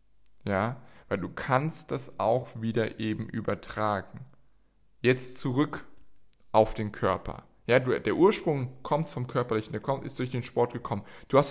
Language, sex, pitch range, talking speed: German, male, 105-130 Hz, 155 wpm